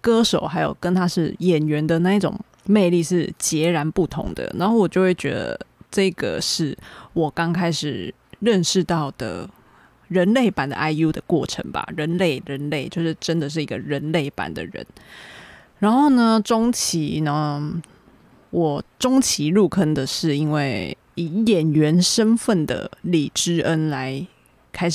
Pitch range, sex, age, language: 155-195 Hz, female, 20-39, Chinese